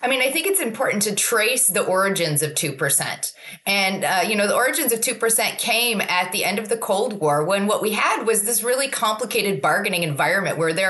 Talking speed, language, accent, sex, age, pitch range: 220 wpm, English, American, female, 20-39, 185-255 Hz